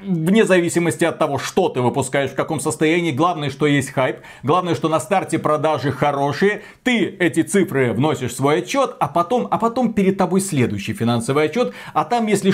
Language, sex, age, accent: Russian, male, 30-49, native